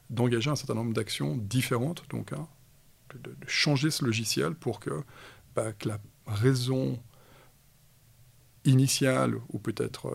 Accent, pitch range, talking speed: French, 115-130 Hz, 130 wpm